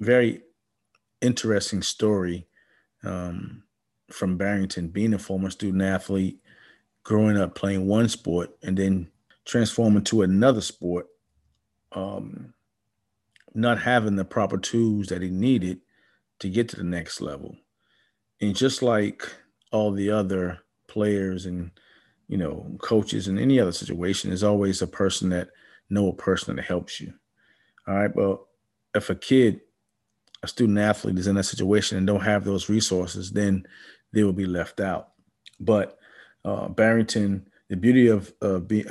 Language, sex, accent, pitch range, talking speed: English, male, American, 95-110 Hz, 145 wpm